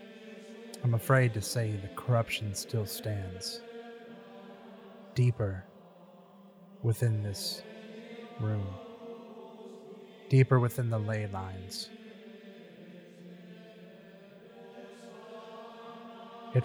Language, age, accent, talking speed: English, 30-49, American, 65 wpm